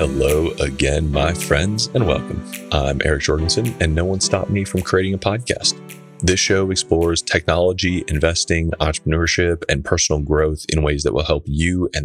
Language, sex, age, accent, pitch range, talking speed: English, male, 30-49, American, 75-90 Hz, 170 wpm